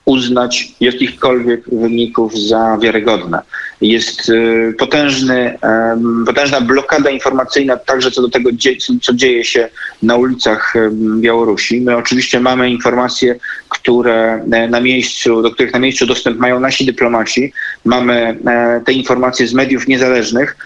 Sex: male